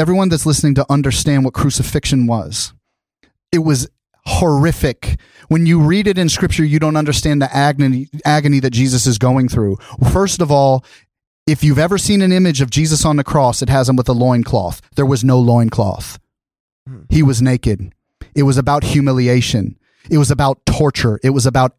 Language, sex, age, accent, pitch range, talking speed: English, male, 30-49, American, 130-160 Hz, 185 wpm